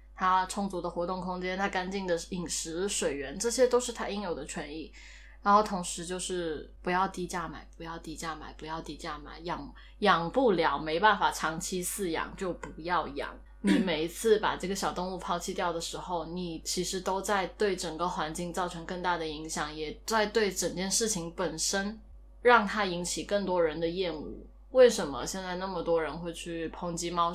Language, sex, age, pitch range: Chinese, female, 20-39, 165-195 Hz